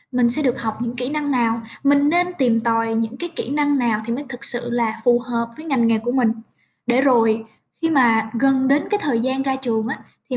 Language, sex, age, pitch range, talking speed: Vietnamese, female, 10-29, 230-290 Hz, 245 wpm